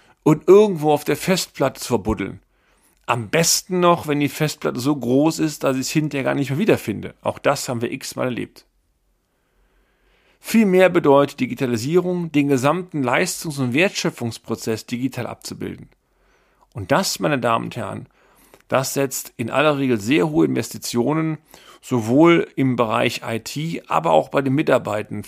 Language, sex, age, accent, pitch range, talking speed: German, male, 40-59, German, 120-155 Hz, 150 wpm